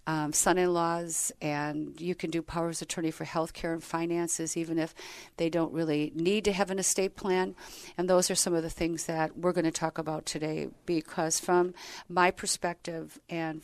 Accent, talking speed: American, 200 wpm